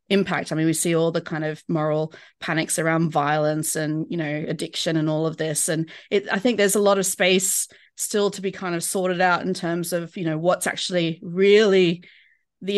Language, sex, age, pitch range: English, female, 30-49, 165-205 Hz